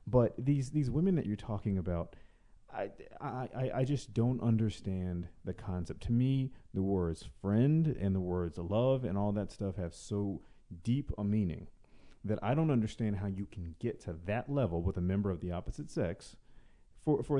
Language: English